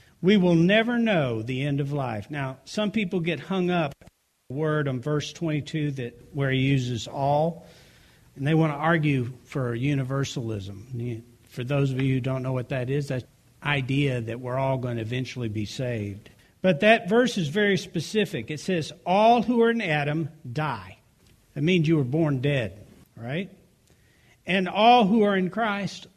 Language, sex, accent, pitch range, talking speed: English, male, American, 130-195 Hz, 180 wpm